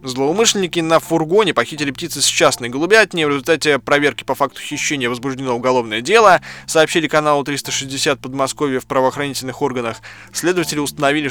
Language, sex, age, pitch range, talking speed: Russian, male, 20-39, 130-165 Hz, 140 wpm